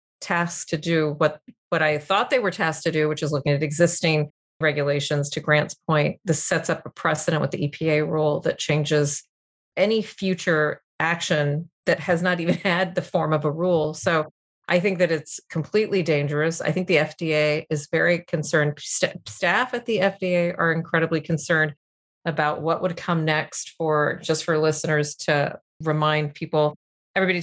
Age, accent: 30-49, American